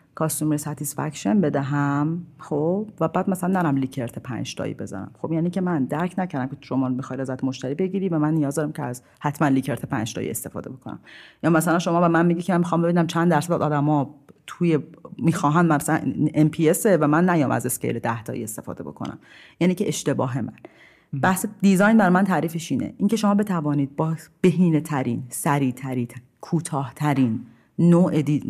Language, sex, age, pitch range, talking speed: Persian, female, 40-59, 140-180 Hz, 175 wpm